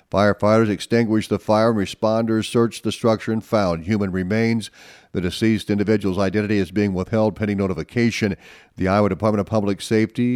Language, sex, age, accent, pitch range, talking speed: English, male, 40-59, American, 105-130 Hz, 155 wpm